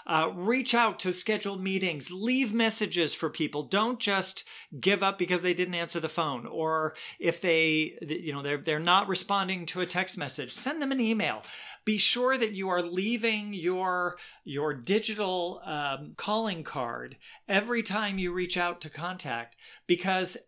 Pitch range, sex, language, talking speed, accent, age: 150-195 Hz, male, English, 165 wpm, American, 50-69